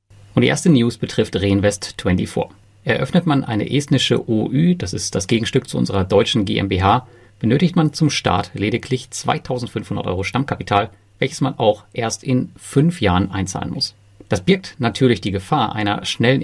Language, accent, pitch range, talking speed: German, German, 100-130 Hz, 155 wpm